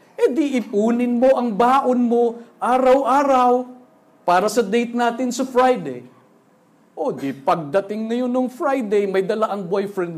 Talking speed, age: 140 wpm, 50-69